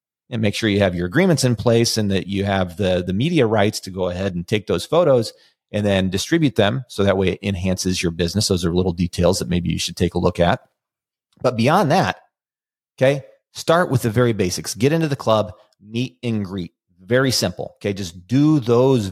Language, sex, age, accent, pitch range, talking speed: English, male, 30-49, American, 95-125 Hz, 215 wpm